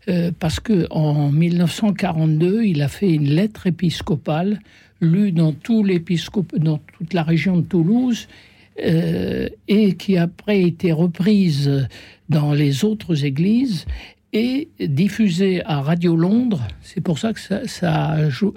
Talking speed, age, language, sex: 135 wpm, 60-79, French, male